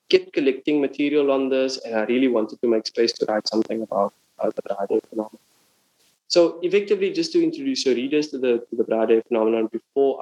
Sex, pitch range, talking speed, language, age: male, 115-150 Hz, 200 wpm, English, 20-39